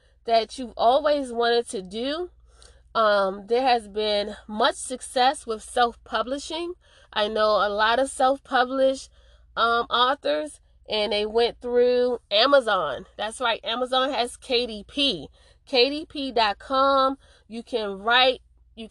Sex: female